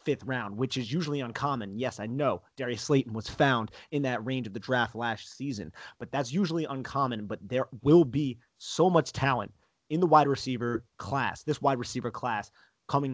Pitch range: 115-140 Hz